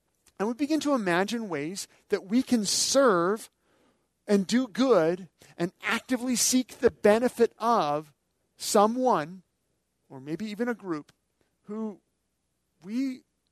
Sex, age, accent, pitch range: male, 40-59, American, 145-220 Hz